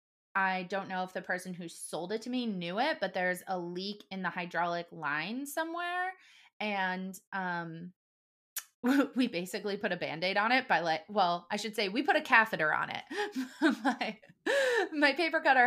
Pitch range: 175-225 Hz